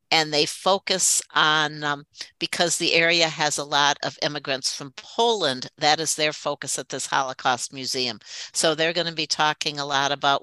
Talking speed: 185 wpm